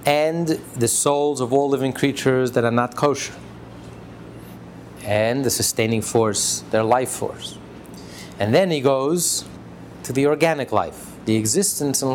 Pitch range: 110-145 Hz